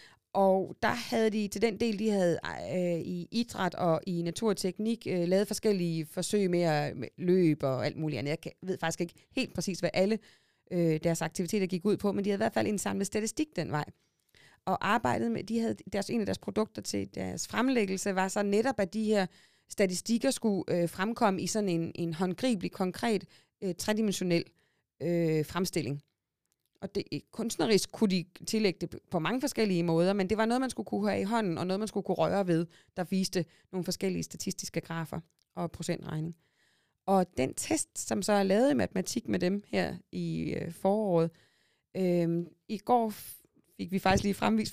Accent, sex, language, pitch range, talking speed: native, female, Danish, 170-215 Hz, 190 wpm